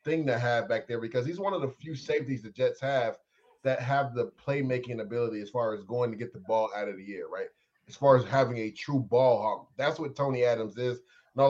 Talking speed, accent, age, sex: 245 wpm, American, 20-39, male